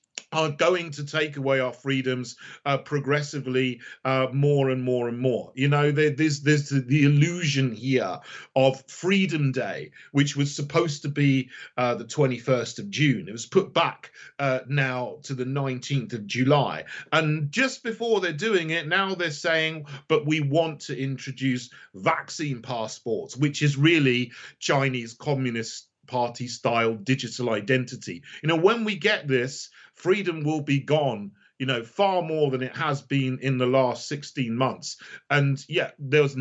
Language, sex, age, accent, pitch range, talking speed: English, male, 40-59, British, 130-160 Hz, 165 wpm